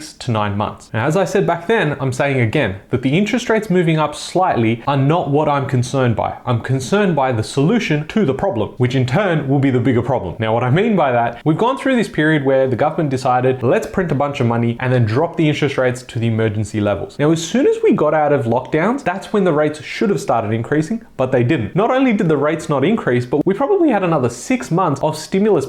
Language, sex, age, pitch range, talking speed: English, male, 20-39, 130-190 Hz, 250 wpm